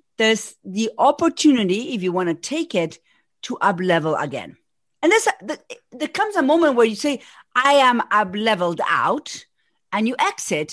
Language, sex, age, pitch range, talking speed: English, female, 40-59, 185-310 Hz, 155 wpm